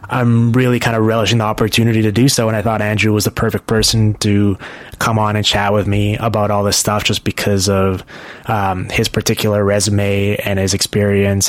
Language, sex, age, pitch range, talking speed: English, male, 20-39, 100-115 Hz, 205 wpm